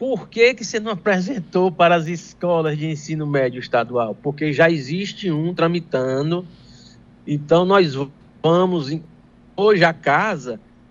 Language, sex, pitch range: Portuguese, male, 155-210 Hz